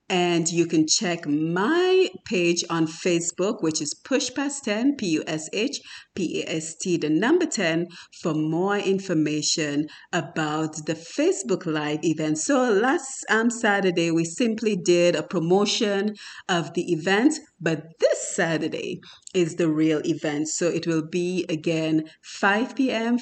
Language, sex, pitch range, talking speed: English, female, 160-215 Hz, 130 wpm